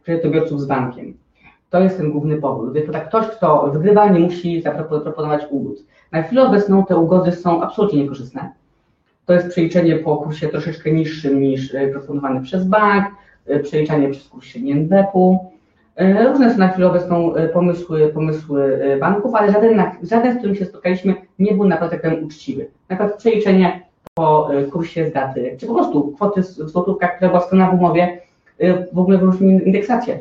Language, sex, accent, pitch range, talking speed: Polish, female, native, 155-195 Hz, 155 wpm